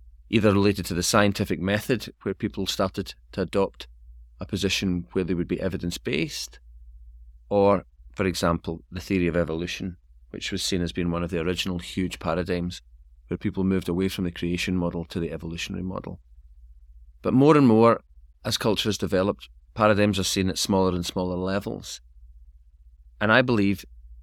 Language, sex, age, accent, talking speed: English, male, 30-49, British, 165 wpm